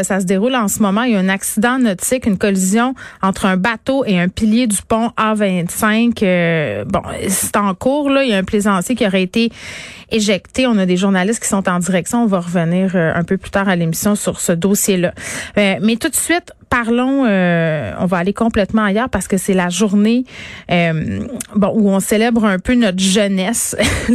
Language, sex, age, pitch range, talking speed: French, female, 30-49, 190-230 Hz, 210 wpm